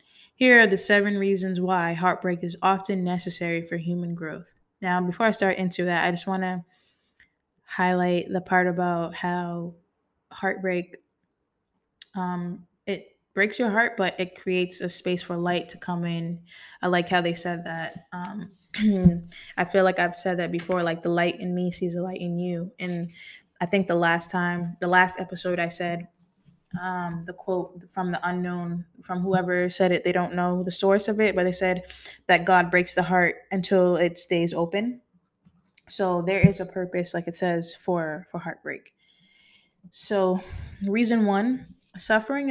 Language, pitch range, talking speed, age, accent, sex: English, 175-190 Hz, 170 wpm, 10-29, American, female